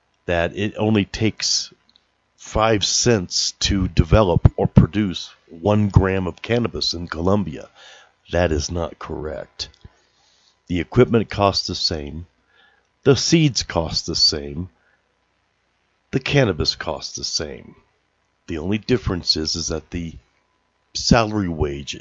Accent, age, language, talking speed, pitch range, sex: American, 50-69, English, 120 wpm, 85-100 Hz, male